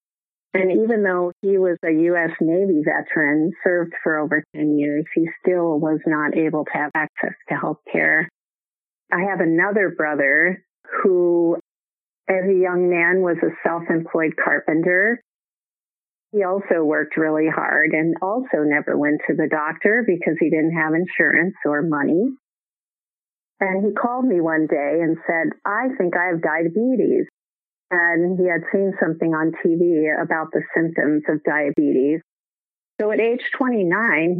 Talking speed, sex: 150 wpm, female